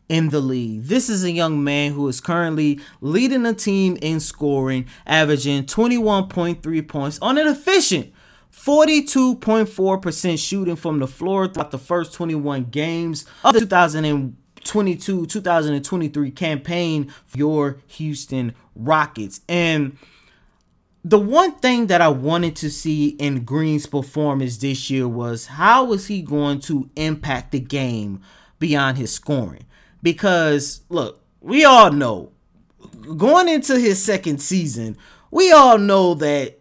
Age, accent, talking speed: 20-39, American, 130 wpm